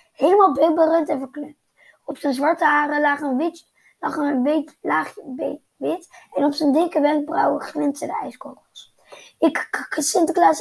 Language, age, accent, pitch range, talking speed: Dutch, 20-39, Dutch, 285-350 Hz, 155 wpm